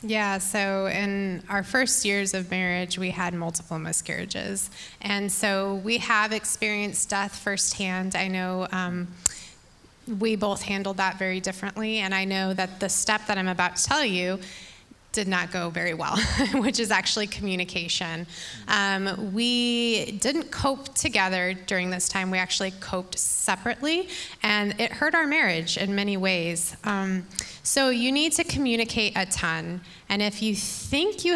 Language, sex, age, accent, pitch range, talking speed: English, female, 20-39, American, 185-215 Hz, 155 wpm